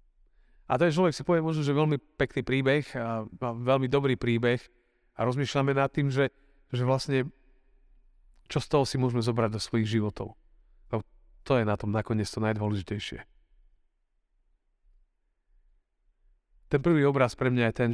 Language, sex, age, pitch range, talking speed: Slovak, male, 40-59, 110-145 Hz, 155 wpm